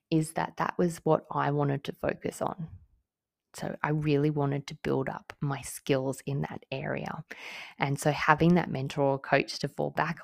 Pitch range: 135-160 Hz